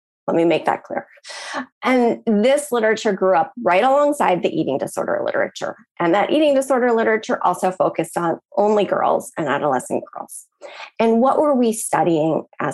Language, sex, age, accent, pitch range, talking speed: English, female, 30-49, American, 190-265 Hz, 165 wpm